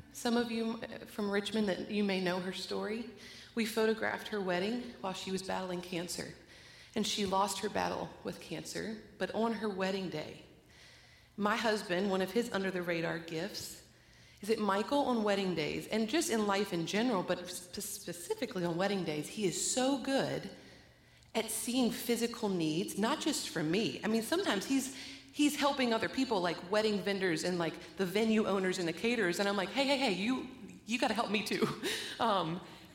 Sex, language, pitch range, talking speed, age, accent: female, English, 185-235 Hz, 185 wpm, 30-49, American